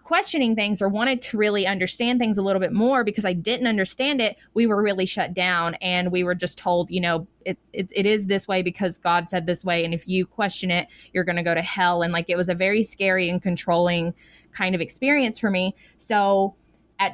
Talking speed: 235 wpm